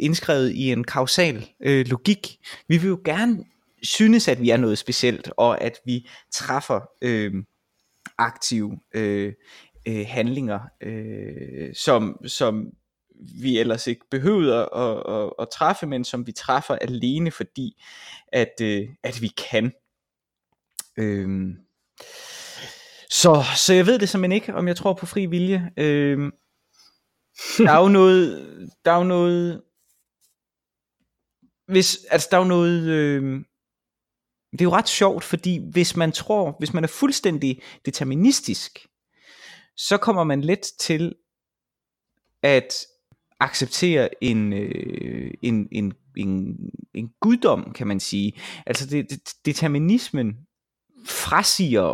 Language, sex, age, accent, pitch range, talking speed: Danish, male, 20-39, native, 115-180 Hz, 125 wpm